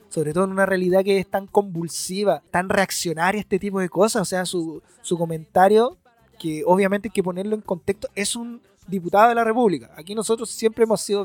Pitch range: 185-230 Hz